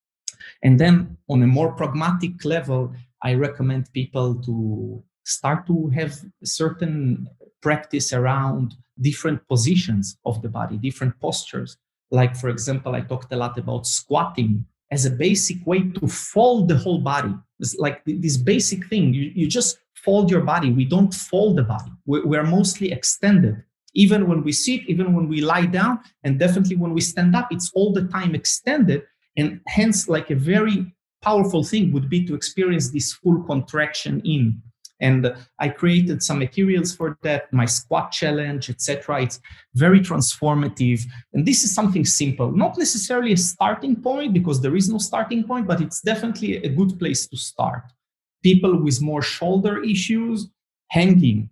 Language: English